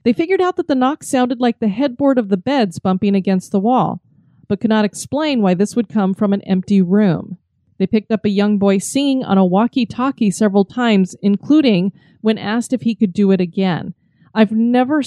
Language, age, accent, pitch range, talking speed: English, 30-49, American, 185-230 Hz, 205 wpm